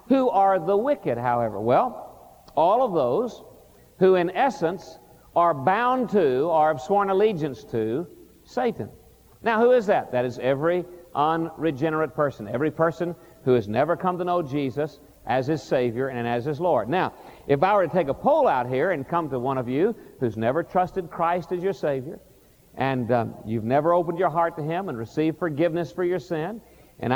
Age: 50-69